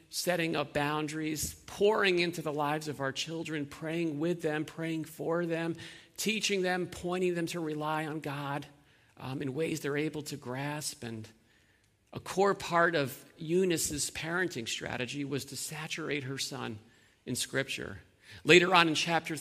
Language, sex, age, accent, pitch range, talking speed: English, male, 50-69, American, 130-160 Hz, 155 wpm